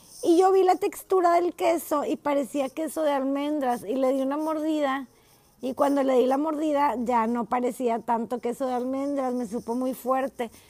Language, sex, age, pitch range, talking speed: Spanish, female, 20-39, 230-280 Hz, 190 wpm